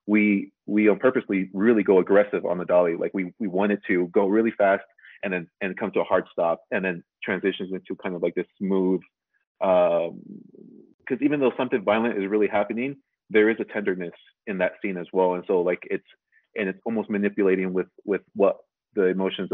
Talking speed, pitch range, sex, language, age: 200 wpm, 90-120 Hz, male, English, 30-49